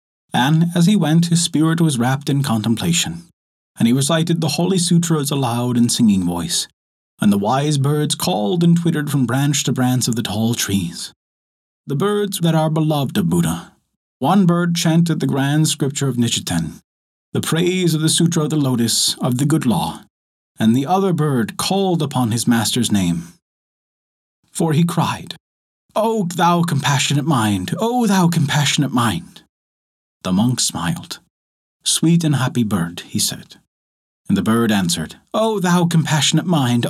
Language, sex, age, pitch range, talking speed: English, male, 30-49, 120-170 Hz, 165 wpm